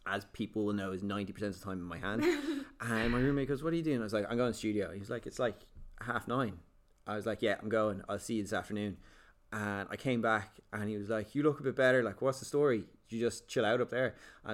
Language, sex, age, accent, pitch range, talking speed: English, male, 20-39, Irish, 100-120 Hz, 290 wpm